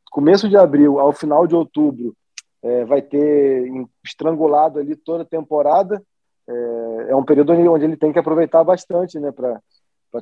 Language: Portuguese